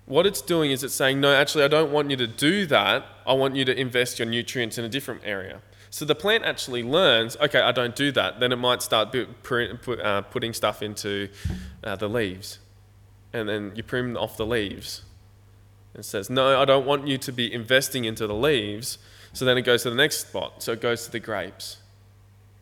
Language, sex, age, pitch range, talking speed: English, male, 20-39, 105-140 Hz, 210 wpm